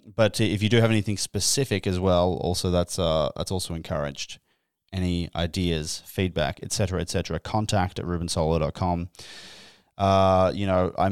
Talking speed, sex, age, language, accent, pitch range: 155 wpm, male, 20-39, English, Australian, 95-120 Hz